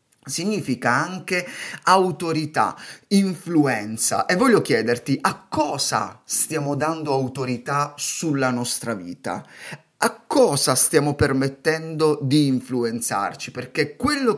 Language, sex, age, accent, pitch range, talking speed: Italian, male, 30-49, native, 125-165 Hz, 95 wpm